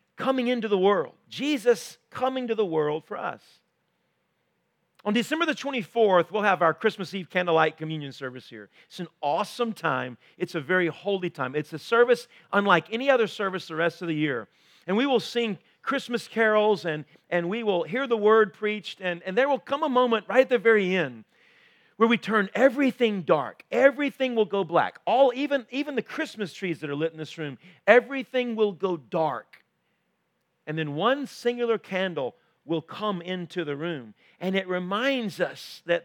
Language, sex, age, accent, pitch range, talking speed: English, male, 40-59, American, 170-240 Hz, 185 wpm